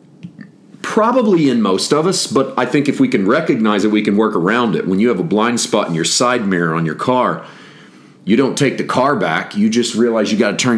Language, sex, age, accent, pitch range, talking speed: English, male, 40-59, American, 105-135 Hz, 245 wpm